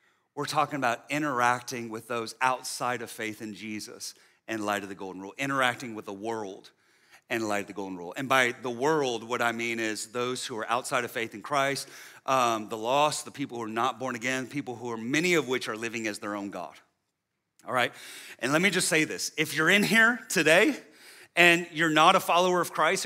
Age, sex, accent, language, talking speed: 40-59, male, American, English, 220 wpm